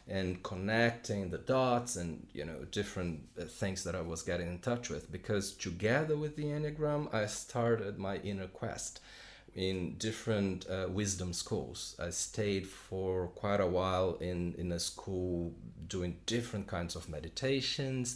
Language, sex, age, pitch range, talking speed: English, male, 40-59, 90-115 Hz, 150 wpm